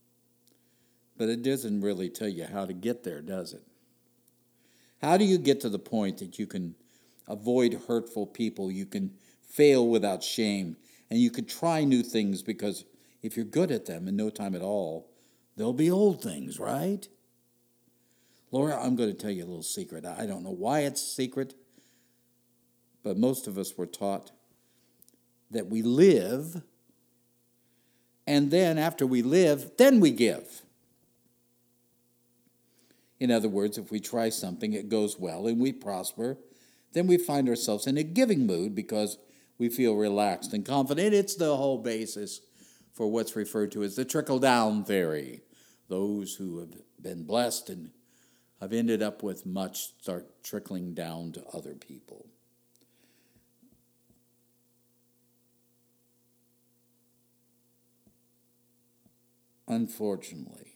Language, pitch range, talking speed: English, 110-130 Hz, 140 wpm